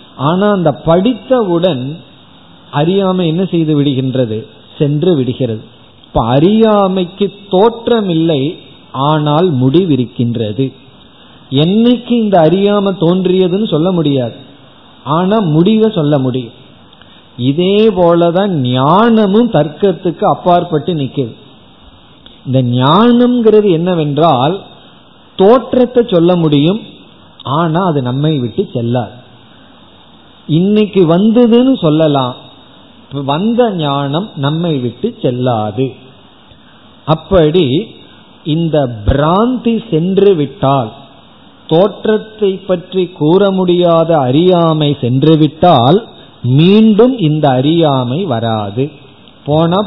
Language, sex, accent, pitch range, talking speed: Tamil, male, native, 130-185 Hz, 80 wpm